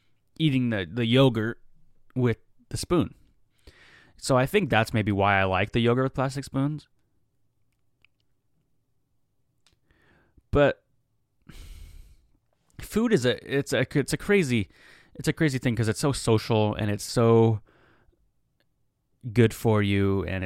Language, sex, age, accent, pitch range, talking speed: English, male, 20-39, American, 95-125 Hz, 130 wpm